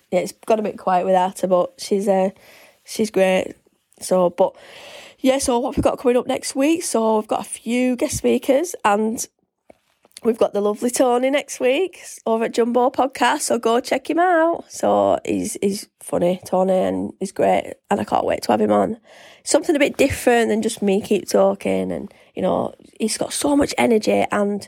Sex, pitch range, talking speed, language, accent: female, 200-255 Hz, 205 wpm, English, British